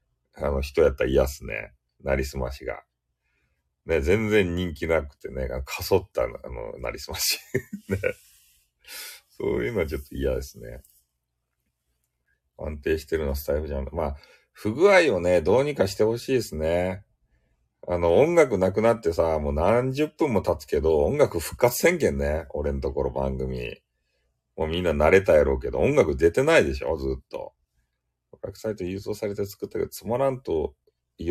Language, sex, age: Japanese, male, 40-59